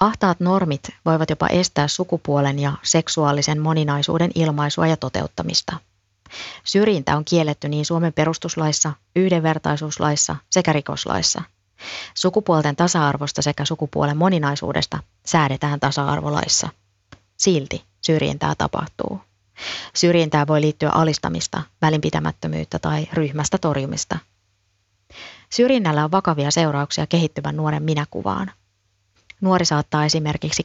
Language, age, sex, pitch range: Finnish, 30-49, female, 105-165 Hz